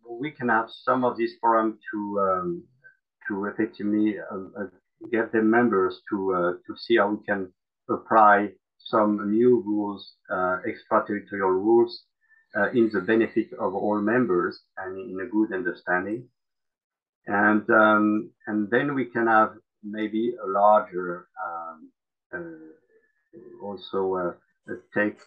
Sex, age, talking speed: male, 50-69, 140 wpm